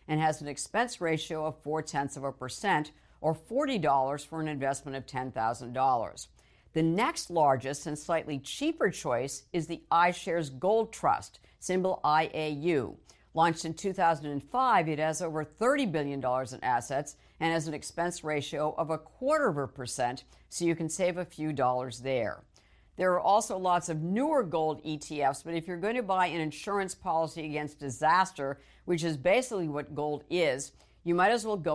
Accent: American